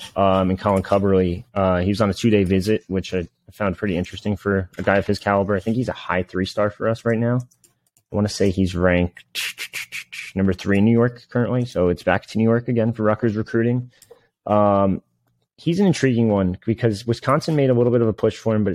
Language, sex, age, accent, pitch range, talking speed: English, male, 30-49, American, 90-115 Hz, 235 wpm